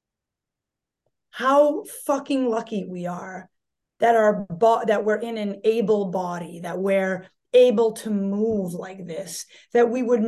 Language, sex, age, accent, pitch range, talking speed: English, female, 30-49, American, 205-250 Hz, 140 wpm